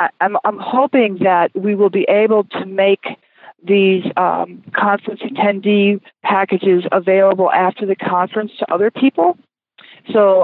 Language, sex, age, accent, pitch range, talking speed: English, female, 40-59, American, 185-215 Hz, 130 wpm